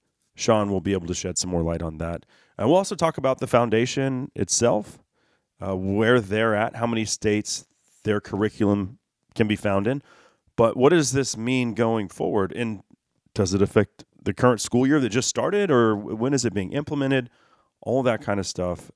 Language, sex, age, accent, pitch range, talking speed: English, male, 30-49, American, 90-120 Hz, 195 wpm